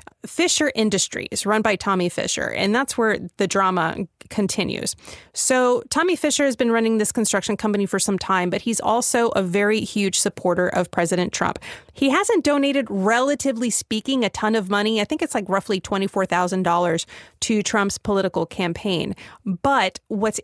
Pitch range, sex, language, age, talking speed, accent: 190-225 Hz, female, English, 30-49, 160 wpm, American